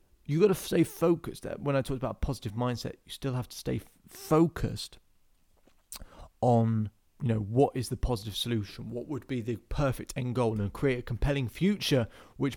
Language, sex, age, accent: English, male, 30-49, British